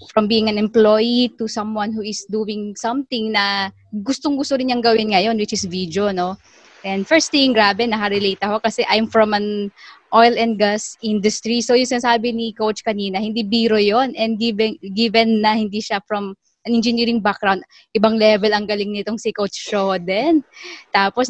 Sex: female